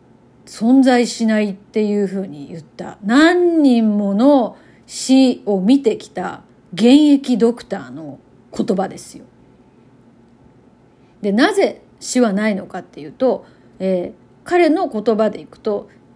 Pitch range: 200-290 Hz